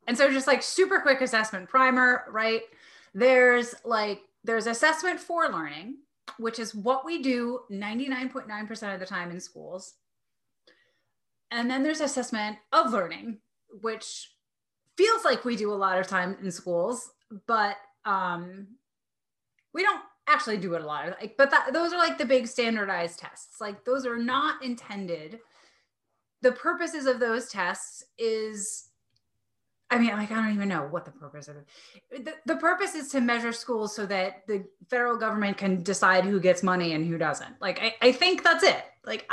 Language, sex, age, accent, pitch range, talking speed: English, female, 30-49, American, 195-275 Hz, 165 wpm